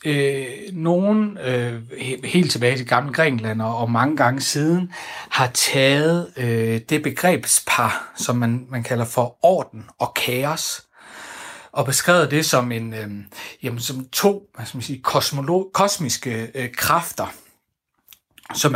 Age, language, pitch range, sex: 60-79, Danish, 125-170 Hz, male